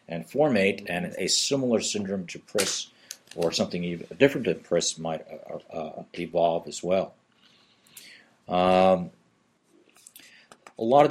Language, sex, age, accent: English, male, 40-59, American